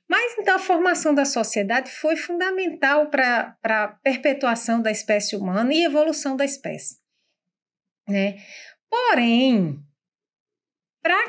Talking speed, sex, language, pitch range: 110 wpm, female, English, 205-280 Hz